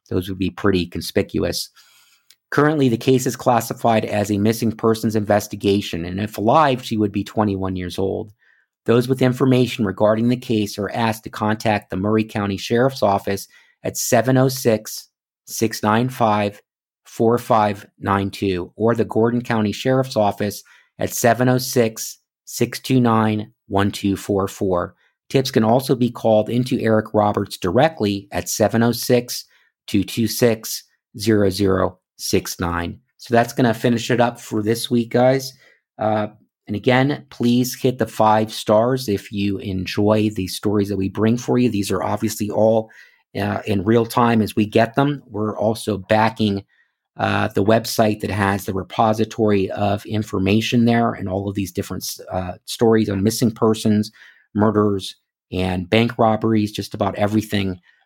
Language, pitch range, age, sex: English, 100-115 Hz, 50-69, male